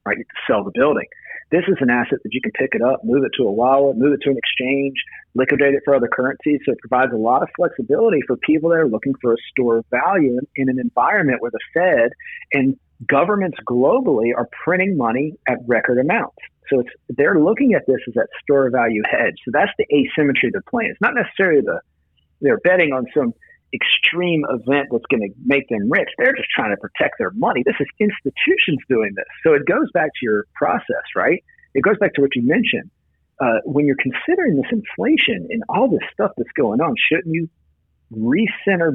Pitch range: 120-185 Hz